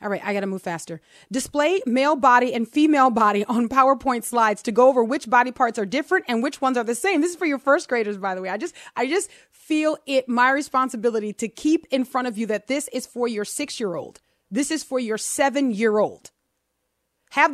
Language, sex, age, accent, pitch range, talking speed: English, female, 30-49, American, 215-275 Hz, 235 wpm